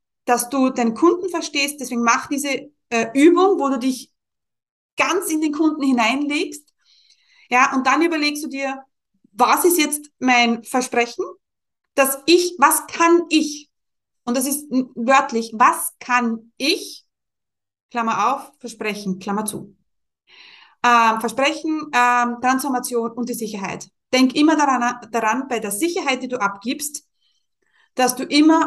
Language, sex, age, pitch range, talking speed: German, female, 30-49, 235-300 Hz, 140 wpm